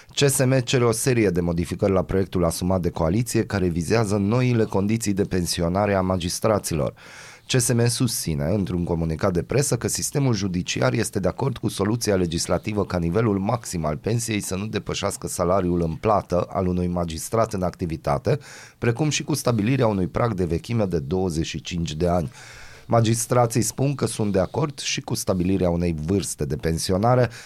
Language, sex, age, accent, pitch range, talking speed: Romanian, male, 30-49, native, 90-120 Hz, 165 wpm